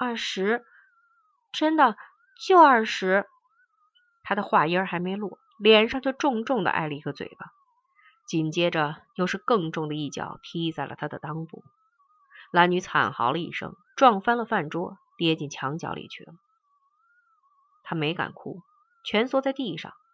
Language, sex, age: Chinese, female, 30-49